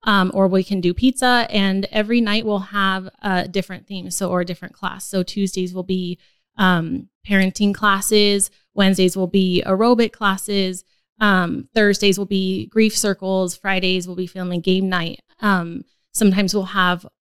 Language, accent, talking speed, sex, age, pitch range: English, American, 160 wpm, female, 20-39, 180-200 Hz